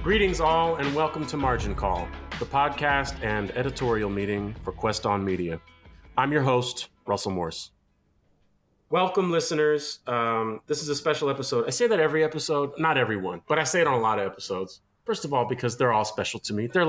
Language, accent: English, American